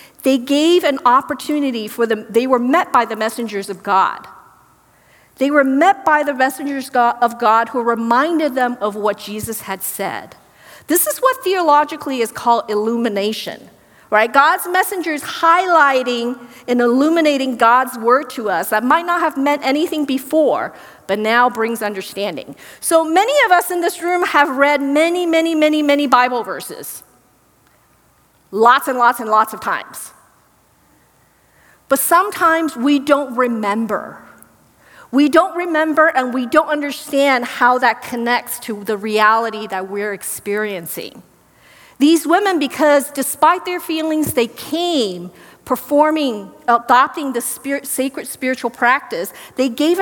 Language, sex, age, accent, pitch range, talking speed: English, female, 50-69, American, 230-305 Hz, 140 wpm